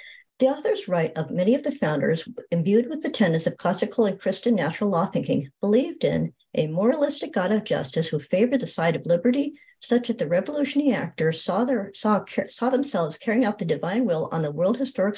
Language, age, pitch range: English, 60-79, 170-250 Hz